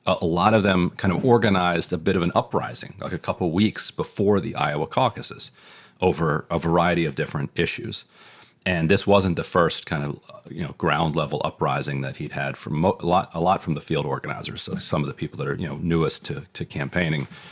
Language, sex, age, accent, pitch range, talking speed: English, male, 40-59, American, 75-100 Hz, 220 wpm